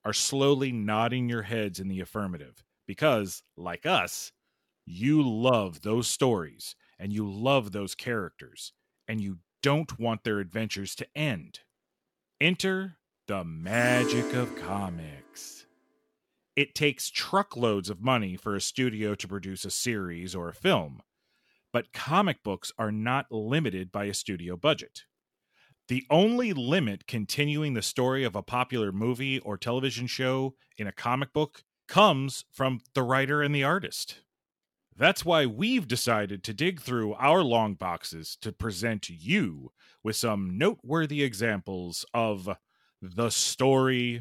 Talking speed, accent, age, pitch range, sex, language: 140 wpm, American, 30-49, 100-135 Hz, male, English